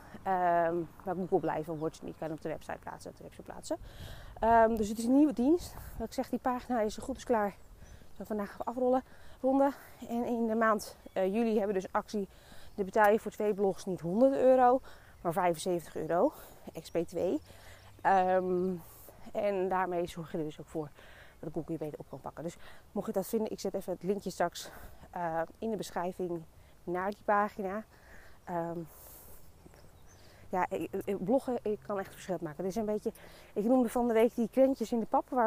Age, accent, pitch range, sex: 20-39, Dutch, 170-235 Hz, female